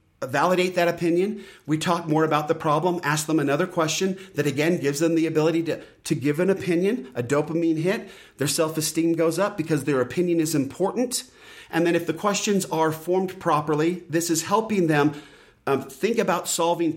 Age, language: 40-59, English